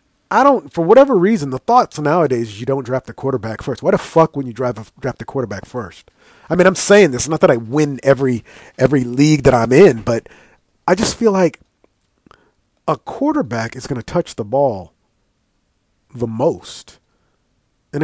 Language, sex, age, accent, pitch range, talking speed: English, male, 40-59, American, 125-180 Hz, 190 wpm